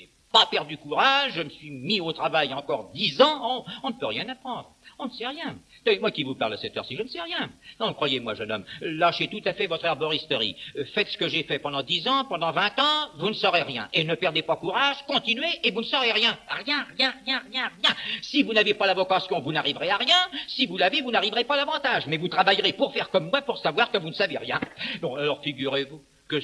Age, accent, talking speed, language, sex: 50-69, French, 250 wpm, French, male